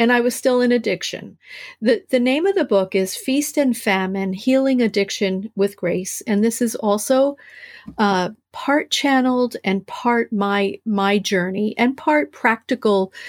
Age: 50-69